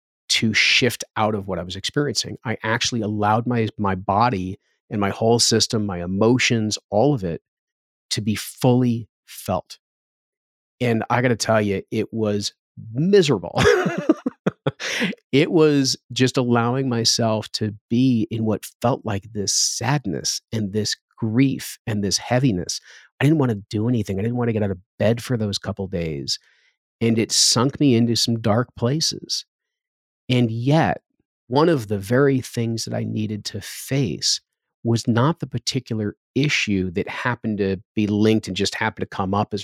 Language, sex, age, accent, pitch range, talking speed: English, male, 40-59, American, 105-130 Hz, 170 wpm